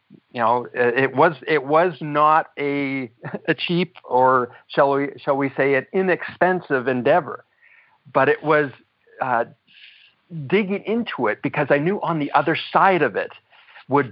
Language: English